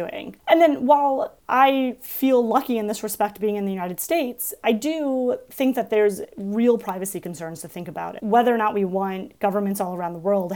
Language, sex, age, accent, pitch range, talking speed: English, female, 30-49, American, 180-225 Hz, 210 wpm